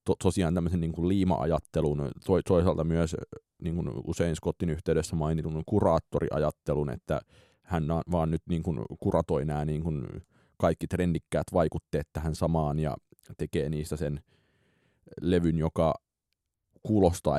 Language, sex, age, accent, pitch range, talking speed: Finnish, male, 30-49, native, 80-95 Hz, 115 wpm